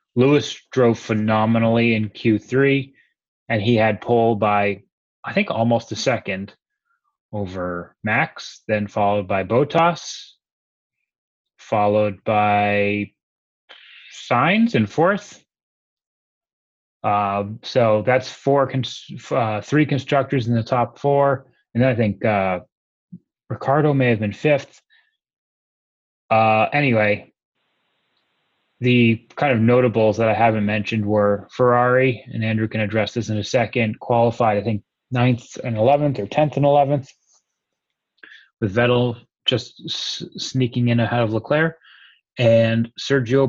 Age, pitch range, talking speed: 30-49, 105-130 Hz, 120 wpm